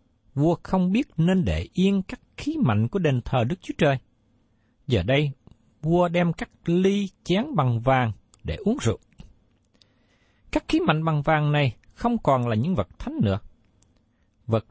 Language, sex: Vietnamese, male